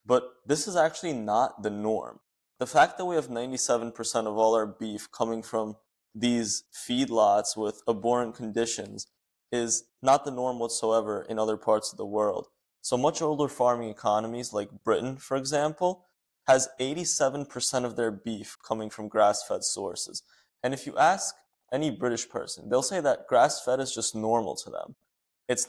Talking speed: 165 wpm